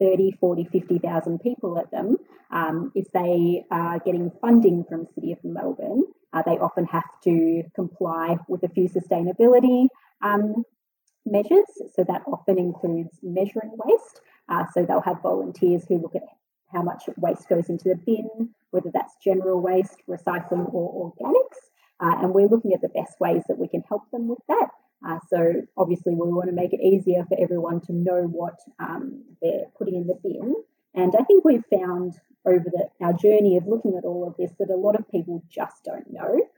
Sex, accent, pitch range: female, Australian, 175-220 Hz